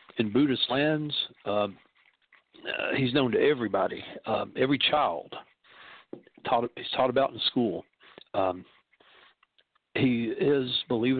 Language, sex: English, male